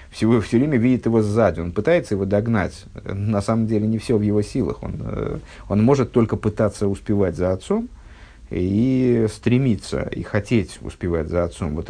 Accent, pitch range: native, 95-115 Hz